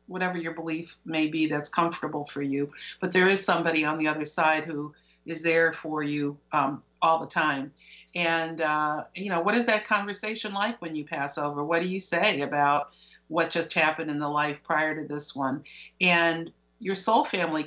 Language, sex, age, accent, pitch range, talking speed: English, female, 50-69, American, 155-190 Hz, 195 wpm